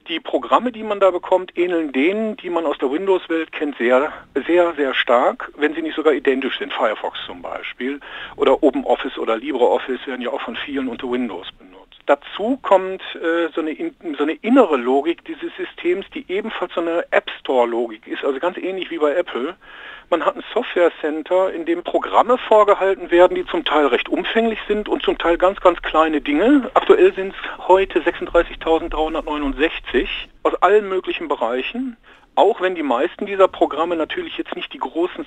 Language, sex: German, male